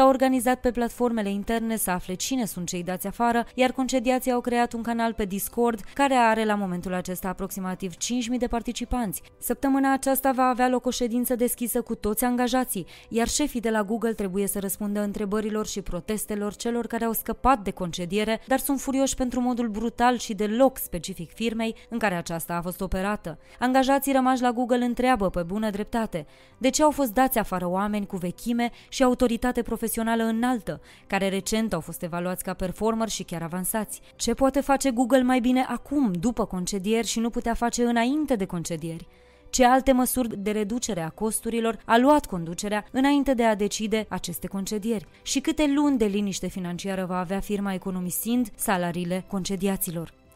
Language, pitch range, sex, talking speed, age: Romanian, 195-250 Hz, female, 175 wpm, 20-39